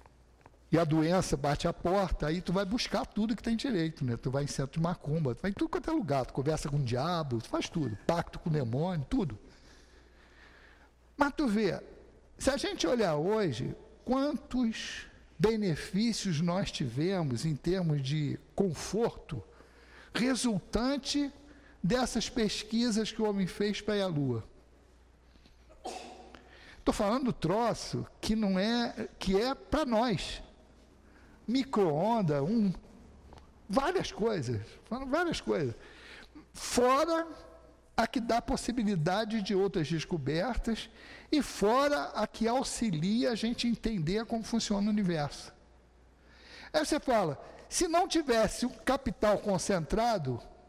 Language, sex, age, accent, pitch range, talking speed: Portuguese, male, 60-79, Brazilian, 150-235 Hz, 135 wpm